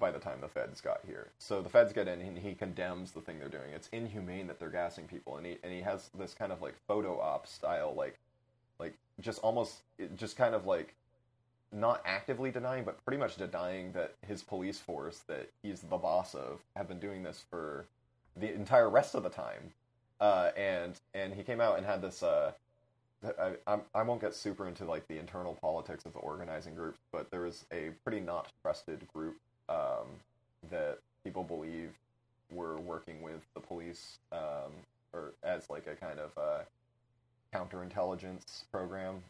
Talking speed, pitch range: 190 wpm, 85-120 Hz